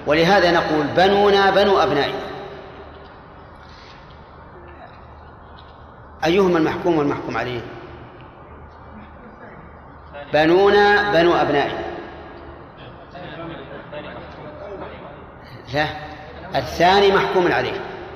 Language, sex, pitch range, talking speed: Arabic, male, 110-170 Hz, 50 wpm